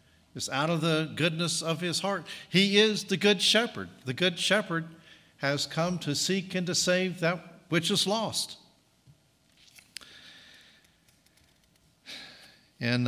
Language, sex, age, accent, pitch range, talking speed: English, male, 50-69, American, 125-165 Hz, 130 wpm